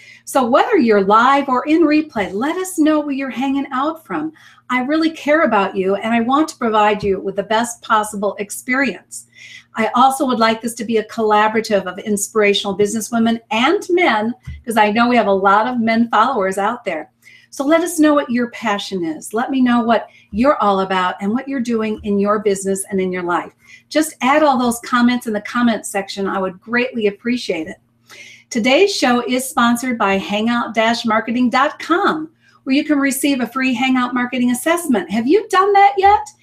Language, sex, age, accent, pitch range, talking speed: English, female, 50-69, American, 210-275 Hz, 195 wpm